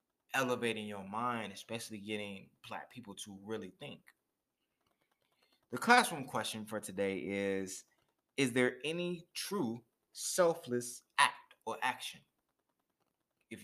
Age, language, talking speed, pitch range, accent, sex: 20-39, English, 110 wpm, 100-130 Hz, American, male